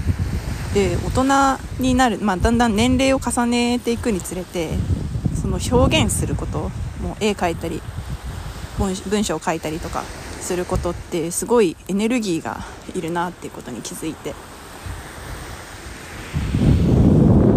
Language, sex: Japanese, female